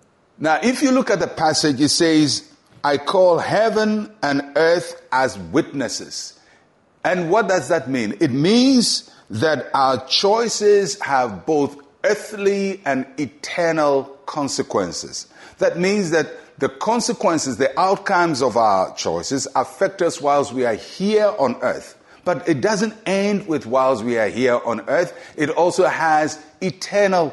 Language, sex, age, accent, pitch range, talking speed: English, male, 50-69, Nigerian, 135-190 Hz, 145 wpm